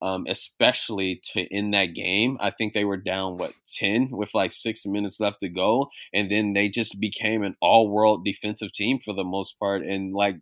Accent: American